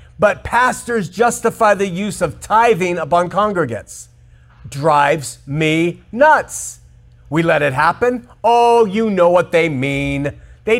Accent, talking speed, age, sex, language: American, 130 wpm, 40-59, male, English